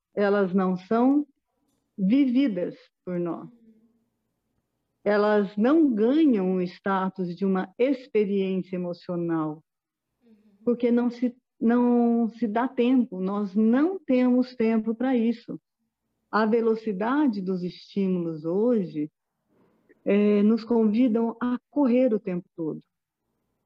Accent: Brazilian